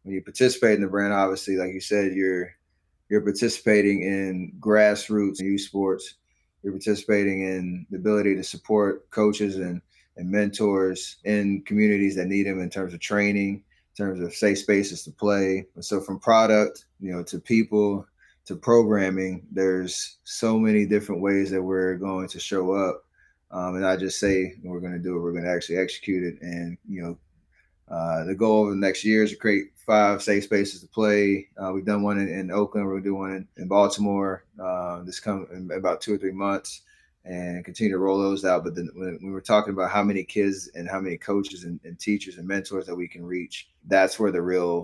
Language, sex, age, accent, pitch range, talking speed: English, male, 20-39, American, 90-100 Hz, 205 wpm